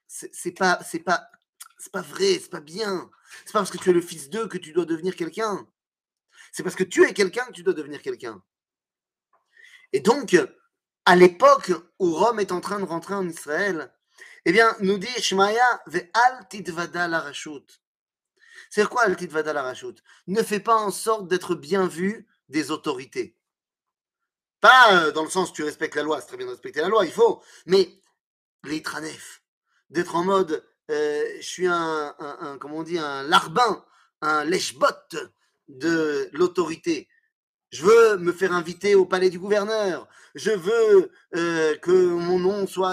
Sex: male